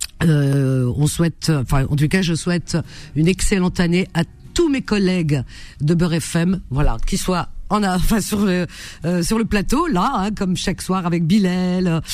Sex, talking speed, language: female, 185 wpm, French